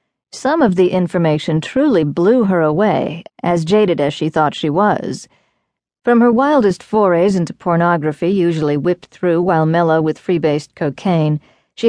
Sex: female